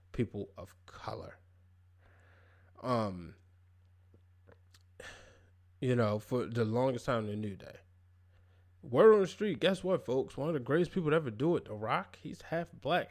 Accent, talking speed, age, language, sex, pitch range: American, 160 wpm, 20-39, English, male, 90-125 Hz